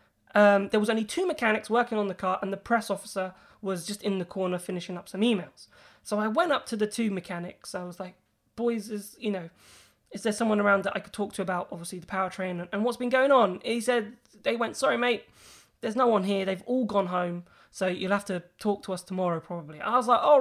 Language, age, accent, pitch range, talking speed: English, 20-39, British, 190-255 Hz, 245 wpm